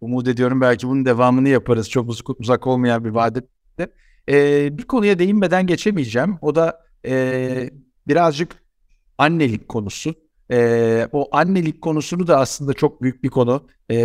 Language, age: Turkish, 60-79